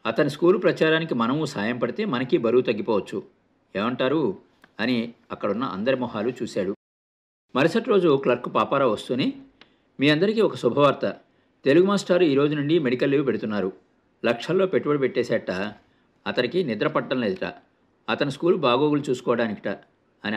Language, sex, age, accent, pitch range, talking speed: Telugu, male, 50-69, native, 125-175 Hz, 125 wpm